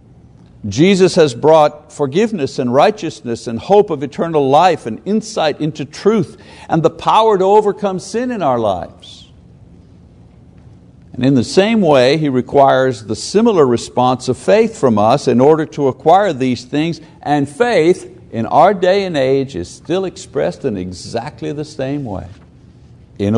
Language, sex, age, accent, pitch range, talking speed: English, male, 60-79, American, 120-170 Hz, 155 wpm